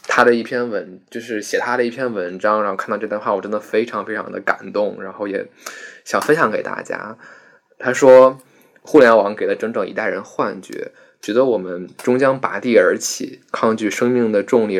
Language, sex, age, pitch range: Chinese, male, 20-39, 100-125 Hz